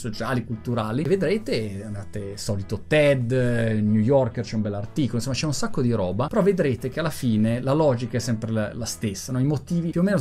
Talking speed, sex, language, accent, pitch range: 205 wpm, male, Italian, native, 115-150 Hz